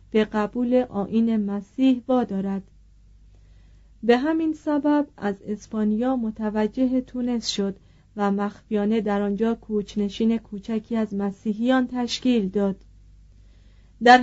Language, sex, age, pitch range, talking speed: Persian, female, 40-59, 200-250 Hz, 100 wpm